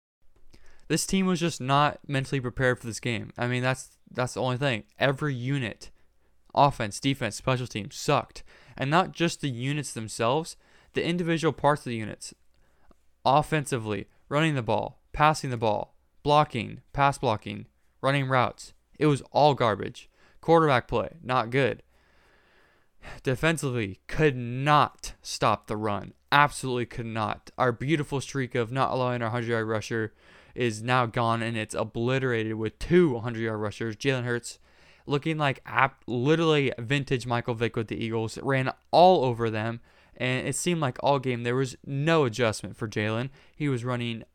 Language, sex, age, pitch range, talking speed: English, male, 20-39, 115-145 Hz, 155 wpm